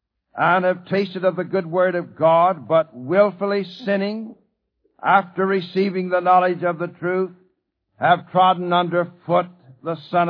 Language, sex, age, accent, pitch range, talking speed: English, male, 60-79, American, 165-190 Hz, 145 wpm